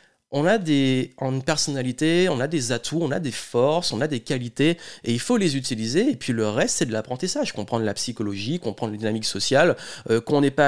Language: French